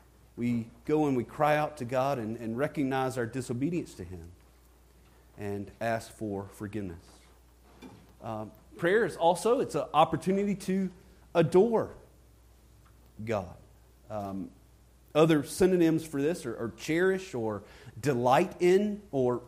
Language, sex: English, male